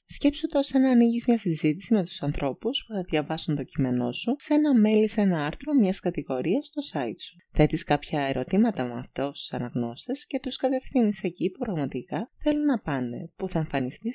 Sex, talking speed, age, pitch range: female, 200 wpm, 20-39, 145-235 Hz